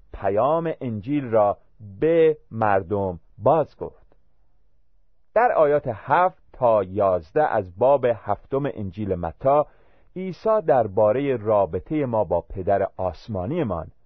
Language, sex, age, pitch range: Persian, male, 40-59, 100-145 Hz